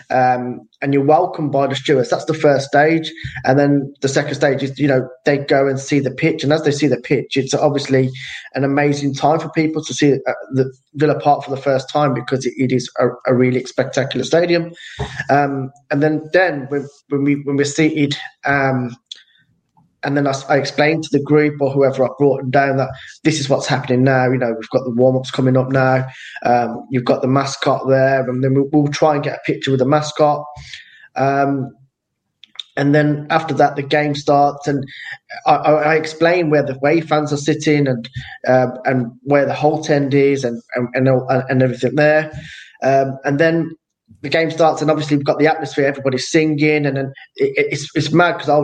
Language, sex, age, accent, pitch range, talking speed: English, male, 10-29, British, 135-155 Hz, 210 wpm